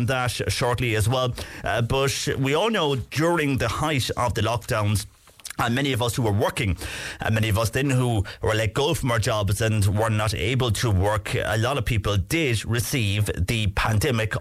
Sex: male